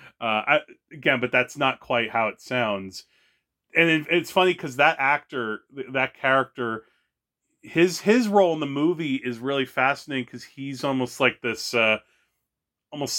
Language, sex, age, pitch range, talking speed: English, male, 30-49, 115-150 Hz, 165 wpm